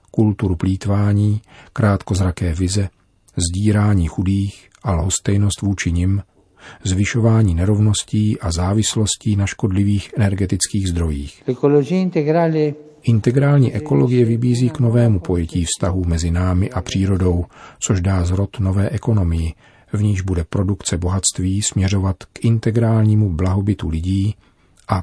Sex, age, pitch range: male, 40-59, 90-110 Hz